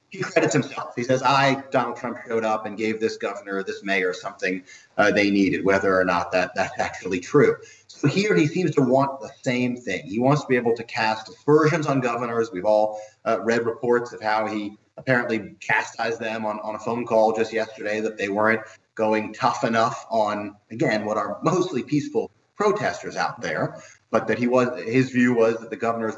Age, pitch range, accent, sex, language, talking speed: 30-49, 110-140 Hz, American, male, English, 205 wpm